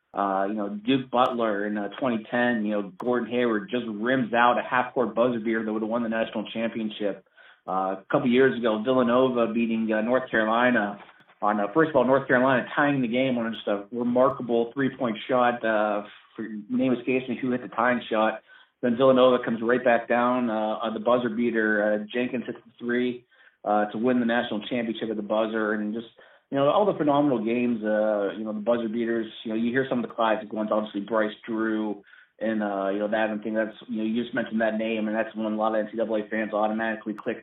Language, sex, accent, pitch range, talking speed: English, male, American, 110-120 Hz, 220 wpm